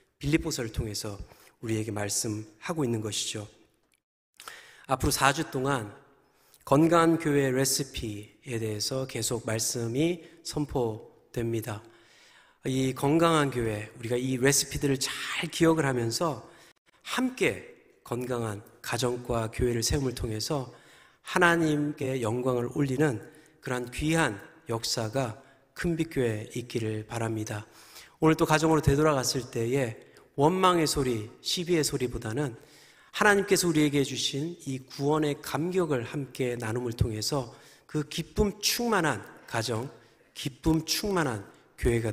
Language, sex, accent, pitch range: Korean, male, native, 115-160 Hz